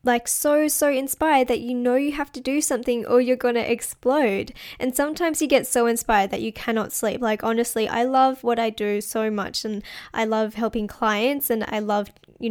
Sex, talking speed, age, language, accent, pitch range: female, 215 wpm, 10-29, English, Australian, 225-270 Hz